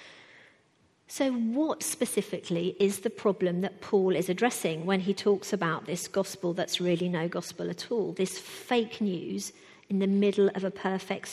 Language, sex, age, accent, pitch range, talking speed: English, female, 50-69, British, 185-230 Hz, 165 wpm